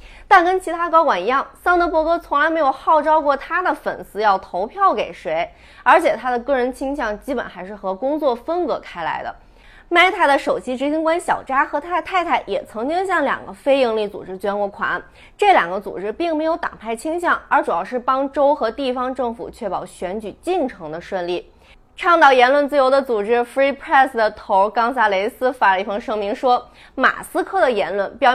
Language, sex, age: Chinese, female, 20-39